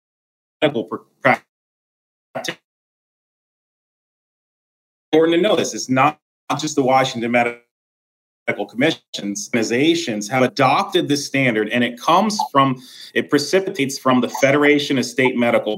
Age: 30-49